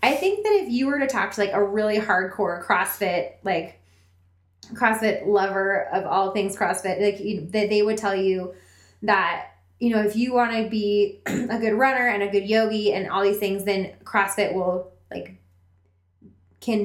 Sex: female